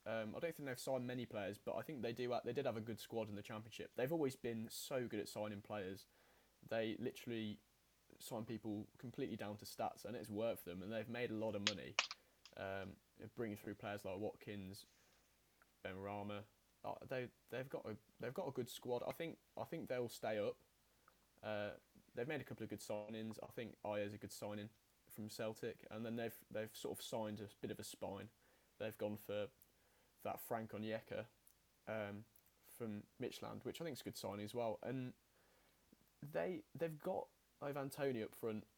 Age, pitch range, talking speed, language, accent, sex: 20-39, 105-120 Hz, 200 wpm, English, British, male